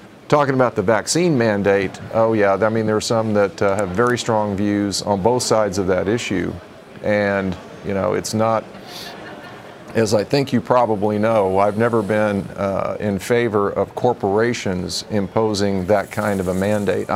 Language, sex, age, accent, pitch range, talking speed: English, male, 50-69, American, 95-110 Hz, 170 wpm